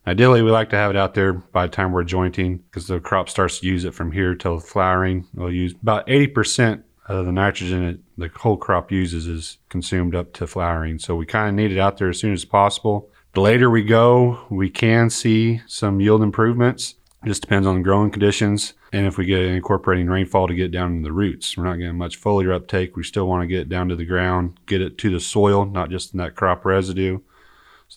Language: English